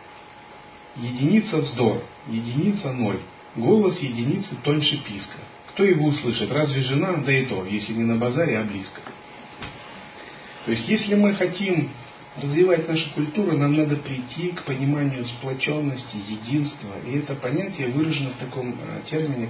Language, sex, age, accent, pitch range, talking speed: Russian, male, 40-59, native, 115-155 Hz, 135 wpm